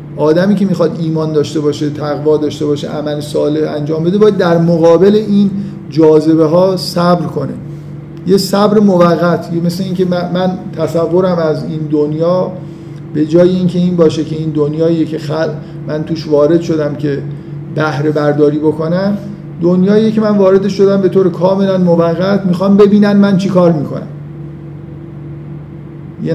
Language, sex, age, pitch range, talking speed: Persian, male, 50-69, 155-180 Hz, 150 wpm